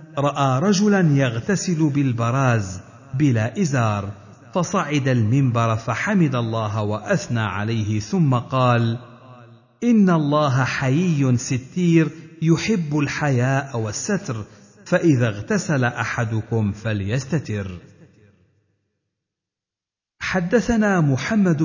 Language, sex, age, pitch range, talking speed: Arabic, male, 50-69, 110-160 Hz, 75 wpm